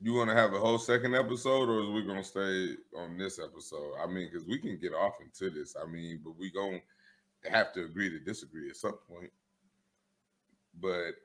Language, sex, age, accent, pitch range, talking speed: English, male, 30-49, American, 105-140 Hz, 205 wpm